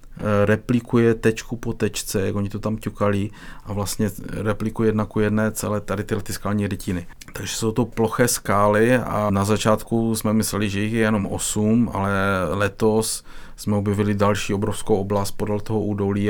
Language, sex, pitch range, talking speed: Czech, male, 100-105 Hz, 165 wpm